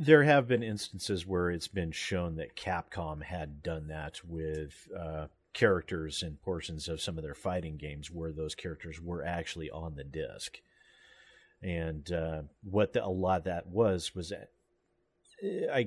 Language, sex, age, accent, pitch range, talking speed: English, male, 40-59, American, 80-95 Hz, 165 wpm